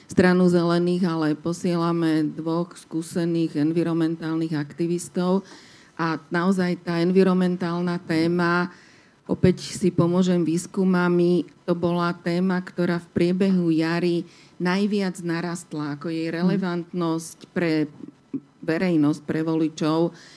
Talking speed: 95 wpm